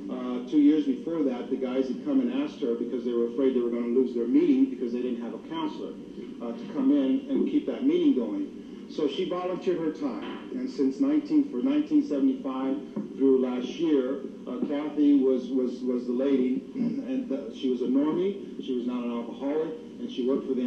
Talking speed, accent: 220 wpm, American